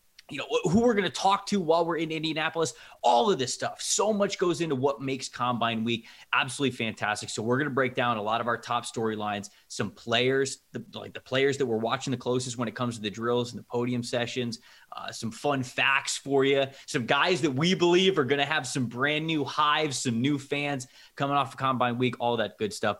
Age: 20-39